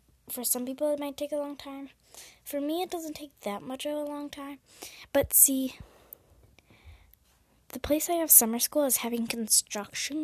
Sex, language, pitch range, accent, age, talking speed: female, English, 225-290 Hz, American, 10-29, 180 wpm